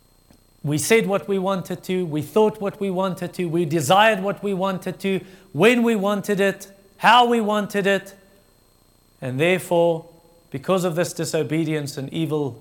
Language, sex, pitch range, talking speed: English, male, 140-195 Hz, 160 wpm